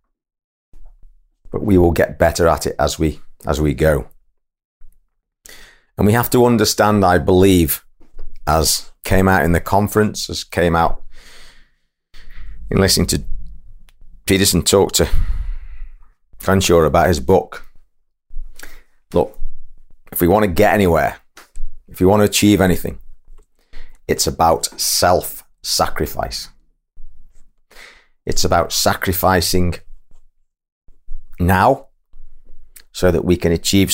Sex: male